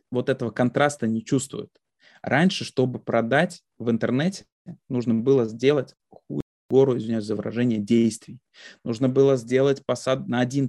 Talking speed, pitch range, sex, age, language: 140 wpm, 115-145 Hz, male, 20-39, Russian